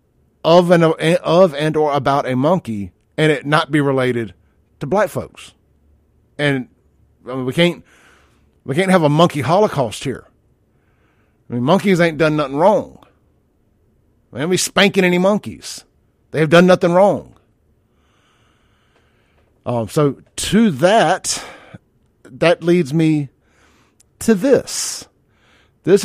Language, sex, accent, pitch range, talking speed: English, male, American, 110-160 Hz, 120 wpm